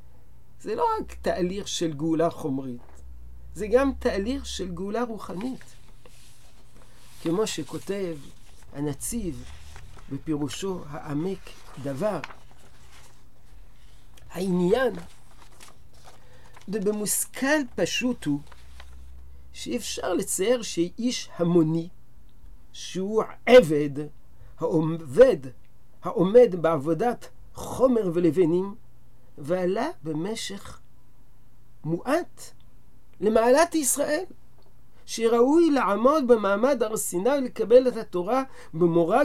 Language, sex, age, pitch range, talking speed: Hebrew, male, 50-69, 150-230 Hz, 75 wpm